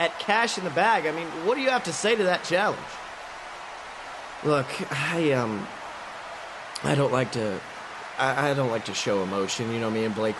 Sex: male